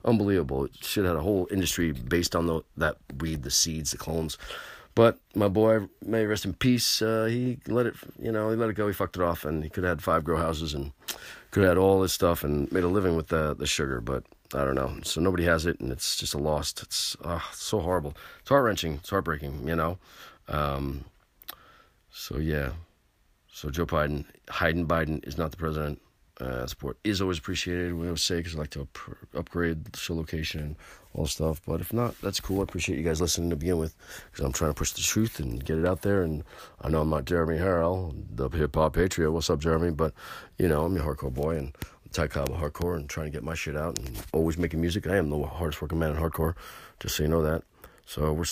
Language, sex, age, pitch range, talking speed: English, male, 40-59, 75-90 Hz, 235 wpm